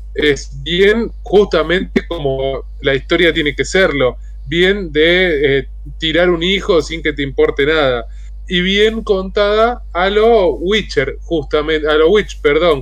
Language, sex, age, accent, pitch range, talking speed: Spanish, male, 20-39, Argentinian, 145-195 Hz, 145 wpm